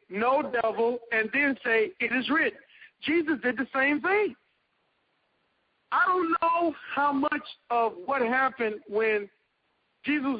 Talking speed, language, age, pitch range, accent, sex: 135 wpm, English, 50-69, 230-315 Hz, American, male